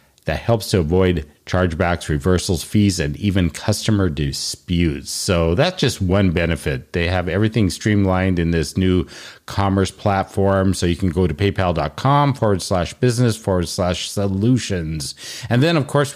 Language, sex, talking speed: English, male, 150 wpm